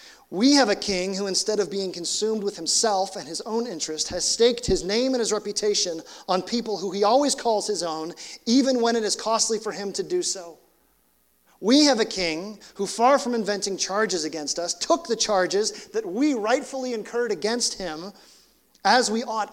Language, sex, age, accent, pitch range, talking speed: English, male, 30-49, American, 155-210 Hz, 195 wpm